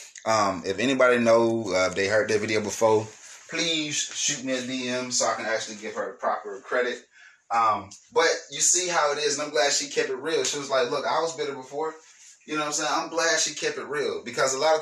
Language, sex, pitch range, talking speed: English, male, 120-160 Hz, 245 wpm